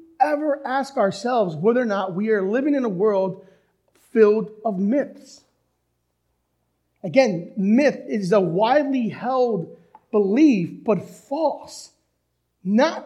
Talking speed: 115 wpm